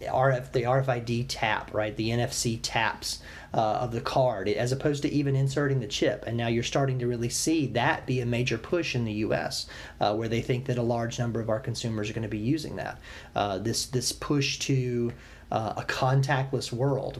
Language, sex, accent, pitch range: English, male, American, 115-135 Hz